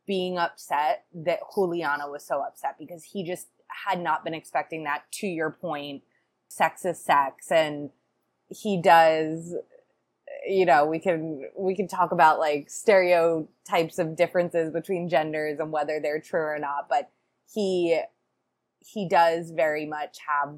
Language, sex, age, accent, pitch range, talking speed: English, female, 20-39, American, 150-190 Hz, 150 wpm